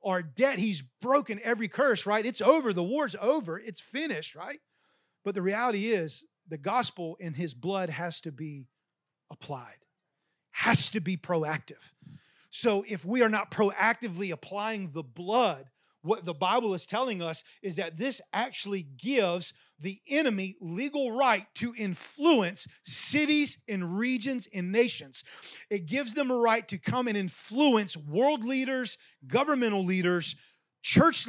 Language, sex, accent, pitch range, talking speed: English, male, American, 190-265 Hz, 150 wpm